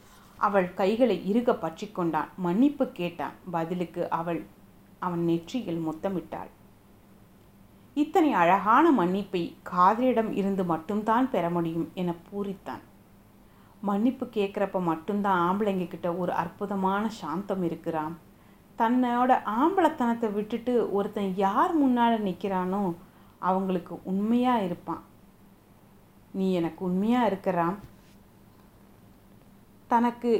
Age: 30-49